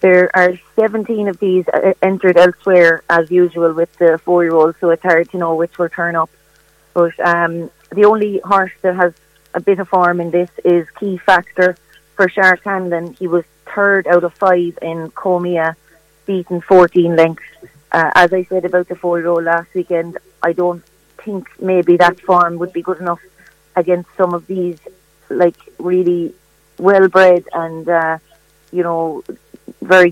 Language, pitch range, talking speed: English, 170-185 Hz, 165 wpm